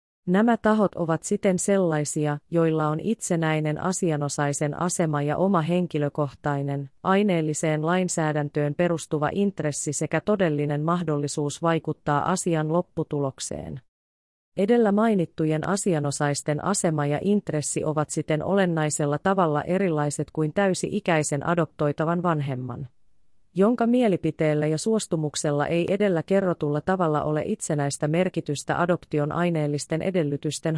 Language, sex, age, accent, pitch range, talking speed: Finnish, female, 30-49, native, 150-185 Hz, 100 wpm